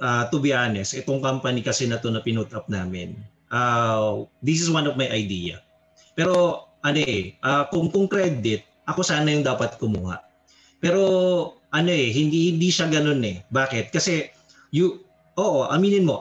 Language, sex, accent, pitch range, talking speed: Filipino, male, native, 120-175 Hz, 160 wpm